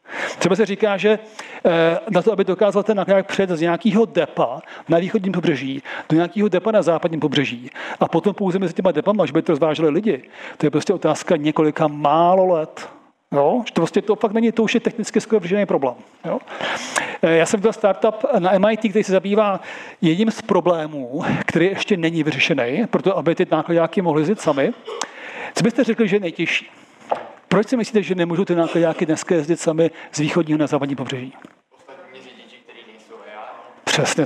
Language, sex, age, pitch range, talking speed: Czech, male, 40-59, 170-220 Hz, 170 wpm